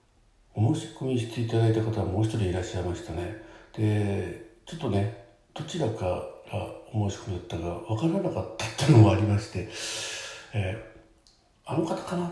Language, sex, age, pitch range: Japanese, male, 60-79, 100-115 Hz